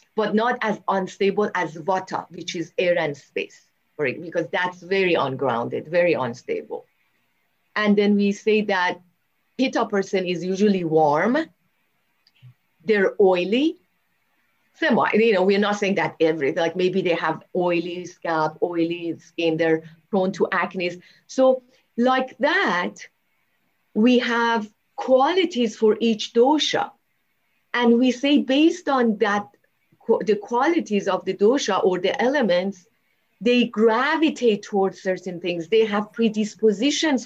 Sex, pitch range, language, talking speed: female, 185-245 Hz, English, 130 wpm